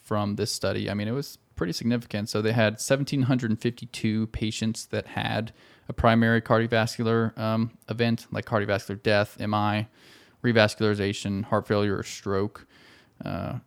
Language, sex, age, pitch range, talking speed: English, male, 20-39, 105-115 Hz, 135 wpm